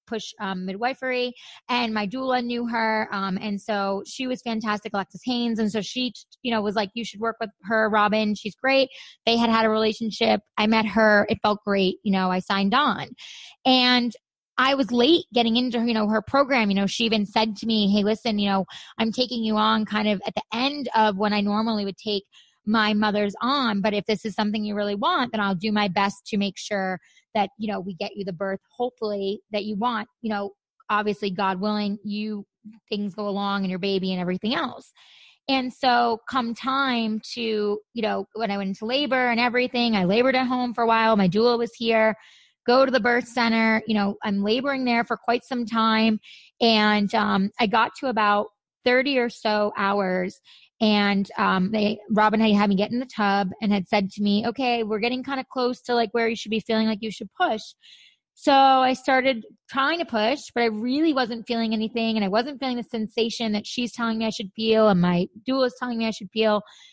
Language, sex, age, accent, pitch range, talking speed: English, female, 20-39, American, 205-240 Hz, 220 wpm